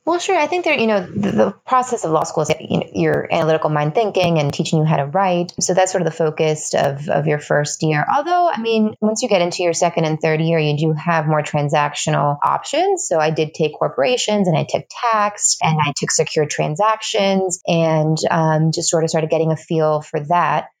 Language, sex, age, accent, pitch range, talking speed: English, female, 20-39, American, 150-185 Hz, 230 wpm